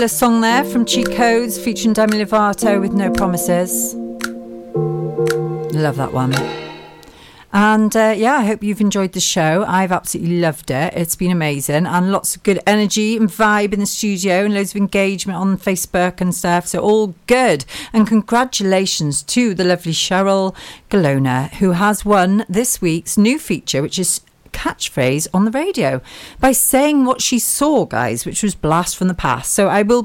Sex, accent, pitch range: female, British, 160-215 Hz